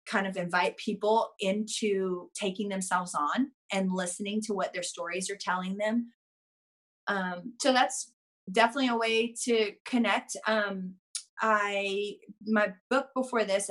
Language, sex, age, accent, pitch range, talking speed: English, female, 30-49, American, 180-220 Hz, 135 wpm